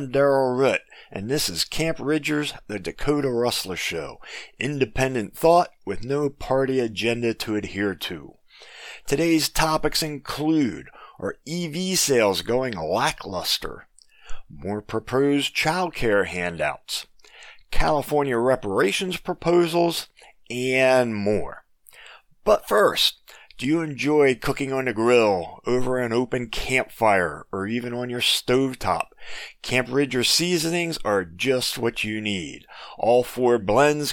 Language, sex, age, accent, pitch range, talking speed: English, male, 40-59, American, 120-150 Hz, 115 wpm